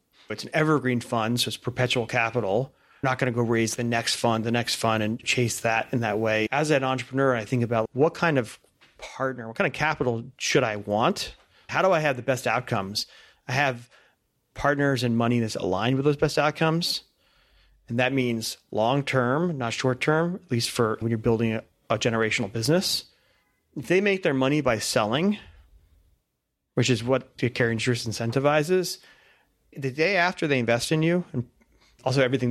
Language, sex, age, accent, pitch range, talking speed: English, male, 30-49, American, 115-145 Hz, 185 wpm